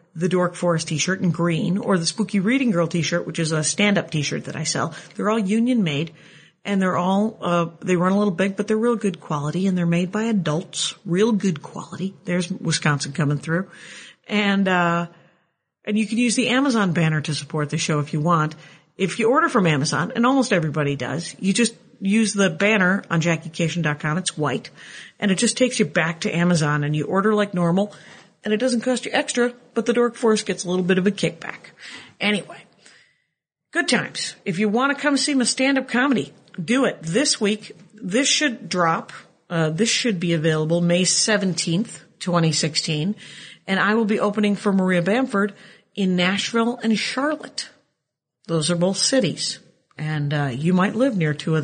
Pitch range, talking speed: 170-215 Hz, 190 wpm